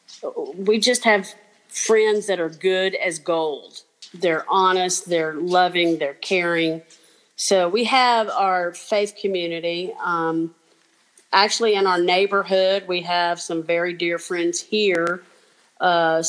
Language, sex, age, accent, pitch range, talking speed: English, female, 40-59, American, 175-220 Hz, 125 wpm